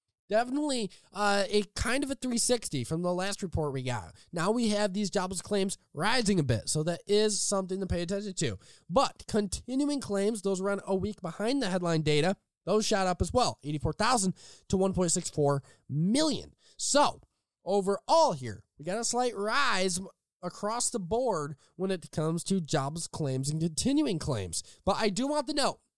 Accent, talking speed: American, 175 wpm